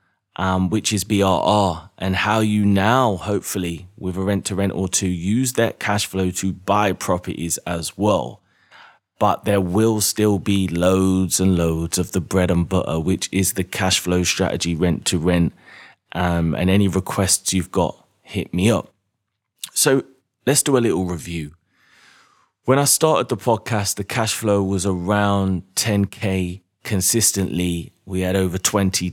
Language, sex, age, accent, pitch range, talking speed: English, male, 20-39, British, 90-105 Hz, 150 wpm